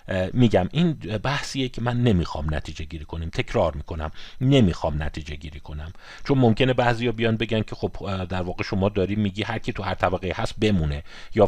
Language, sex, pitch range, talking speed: Persian, male, 90-125 Hz, 205 wpm